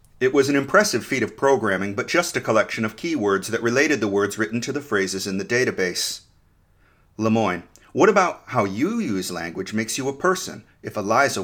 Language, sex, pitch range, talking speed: English, male, 95-125 Hz, 195 wpm